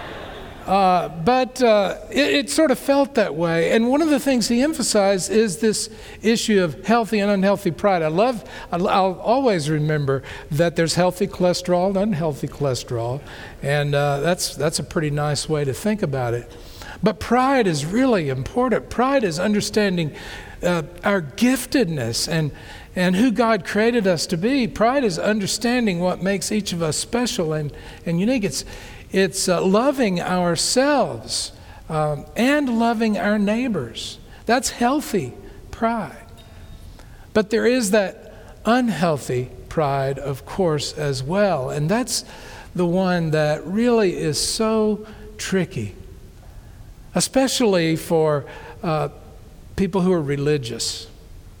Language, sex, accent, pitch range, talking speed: English, male, American, 140-220 Hz, 140 wpm